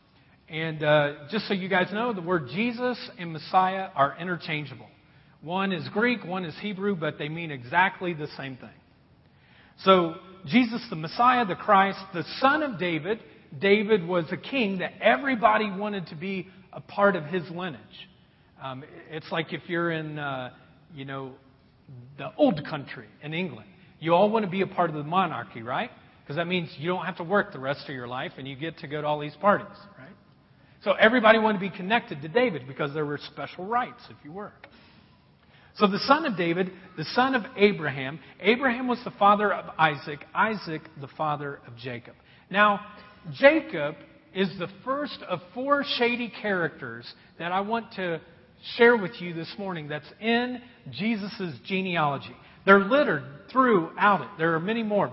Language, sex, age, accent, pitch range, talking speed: English, male, 40-59, American, 150-210 Hz, 180 wpm